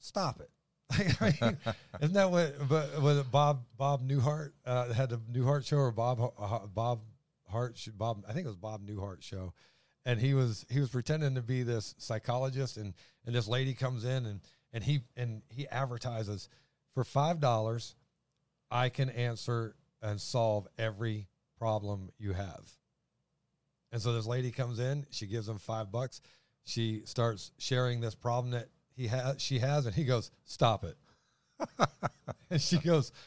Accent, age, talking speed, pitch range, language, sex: American, 40-59, 165 wpm, 115-140 Hz, English, male